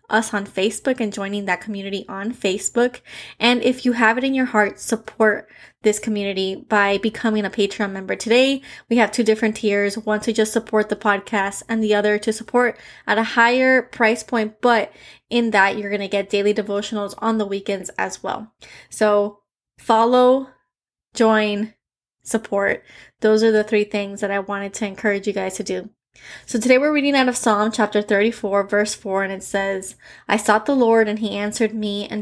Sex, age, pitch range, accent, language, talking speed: female, 20-39, 205-235 Hz, American, English, 190 wpm